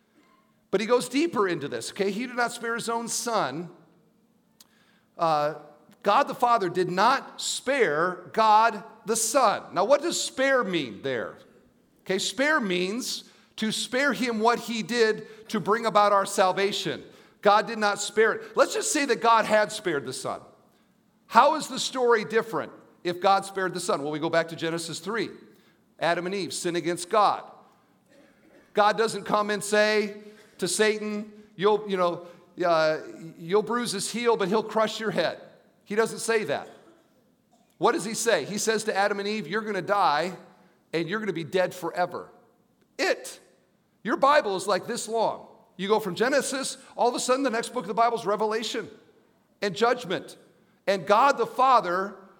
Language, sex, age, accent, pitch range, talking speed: English, male, 50-69, American, 195-235 Hz, 175 wpm